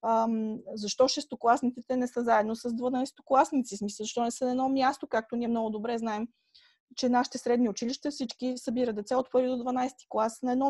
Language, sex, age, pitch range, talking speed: Bulgarian, female, 20-39, 230-280 Hz, 185 wpm